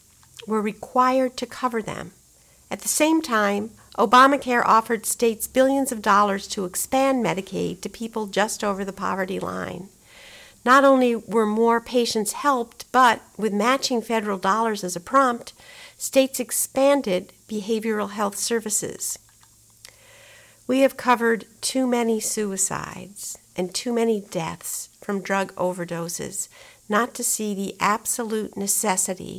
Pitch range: 200-250 Hz